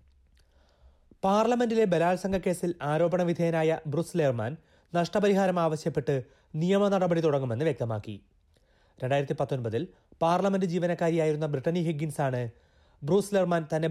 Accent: native